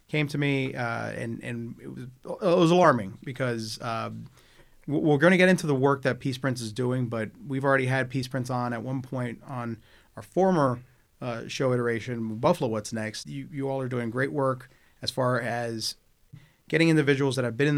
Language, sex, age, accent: English, male, 30-49, American